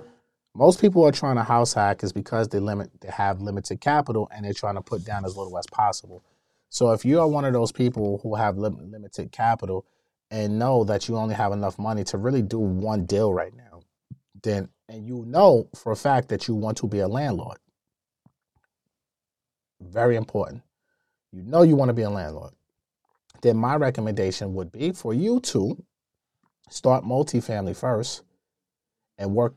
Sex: male